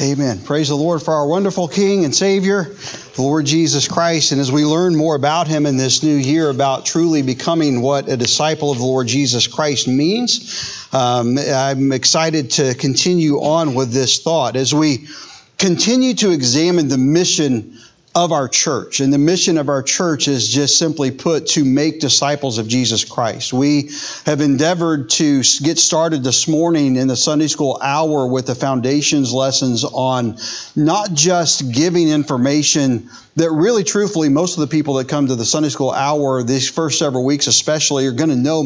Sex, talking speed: male, 185 wpm